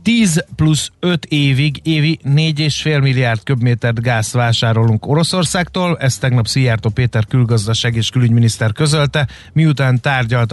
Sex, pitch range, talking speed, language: male, 115-145 Hz, 120 wpm, Hungarian